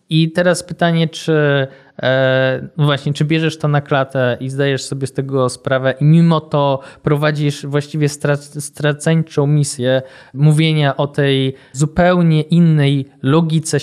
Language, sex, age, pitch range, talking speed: Polish, male, 20-39, 135-160 Hz, 125 wpm